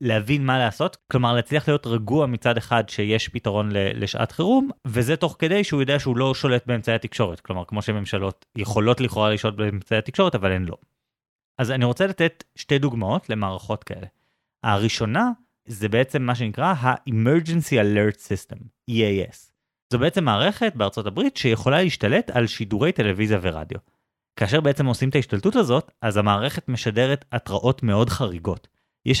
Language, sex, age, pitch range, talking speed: Hebrew, male, 30-49, 110-155 Hz, 155 wpm